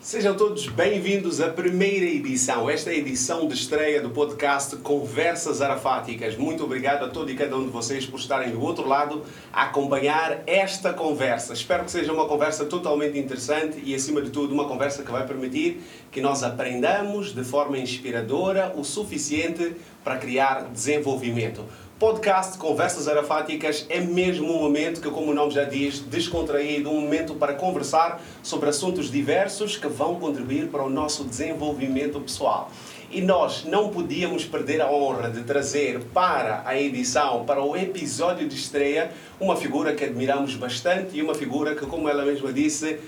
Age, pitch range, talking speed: 30-49, 140-170 Hz, 165 wpm